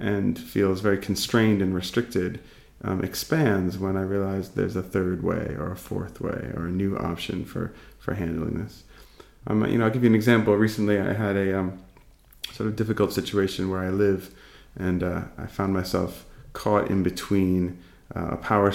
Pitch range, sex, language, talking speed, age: 90-110 Hz, male, Czech, 185 wpm, 30-49